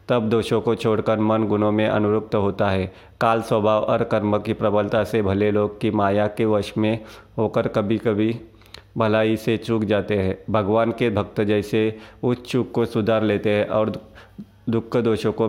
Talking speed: 180 wpm